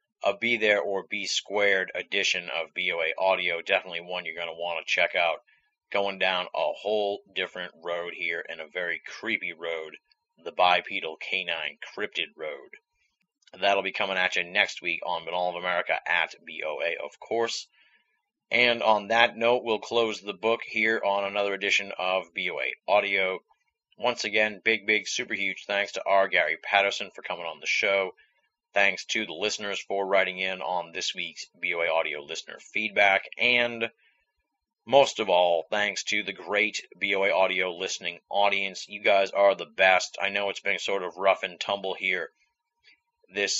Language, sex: English, male